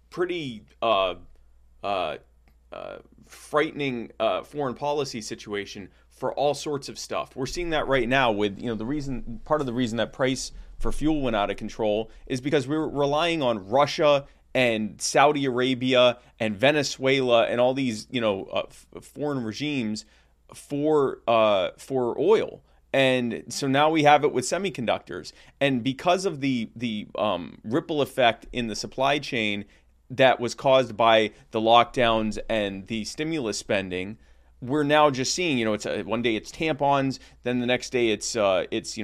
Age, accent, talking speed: 30-49, American, 170 wpm